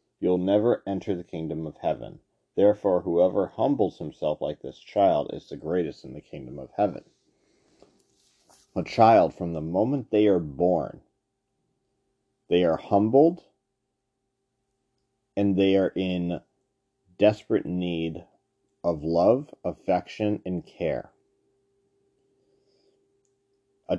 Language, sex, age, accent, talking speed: English, male, 40-59, American, 115 wpm